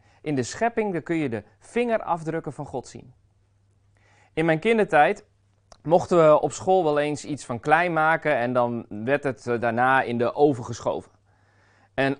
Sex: male